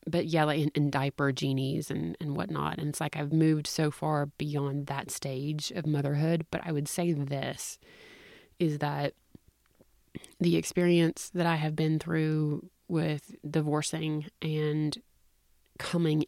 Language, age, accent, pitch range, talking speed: English, 30-49, American, 145-155 Hz, 155 wpm